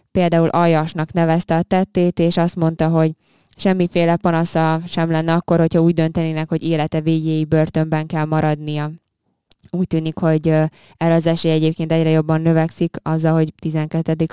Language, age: Hungarian, 20-39